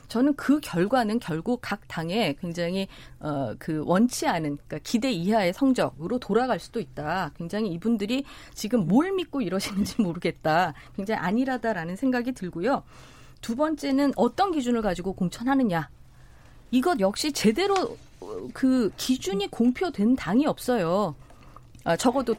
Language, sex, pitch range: Korean, female, 180-265 Hz